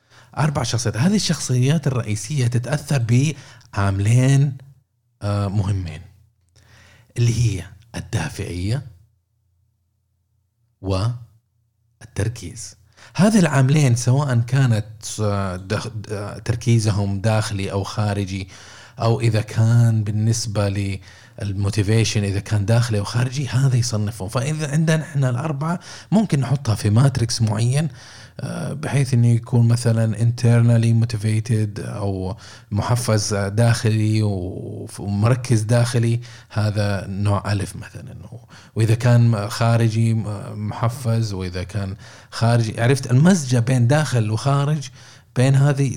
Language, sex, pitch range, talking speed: Arabic, male, 105-125 Hz, 90 wpm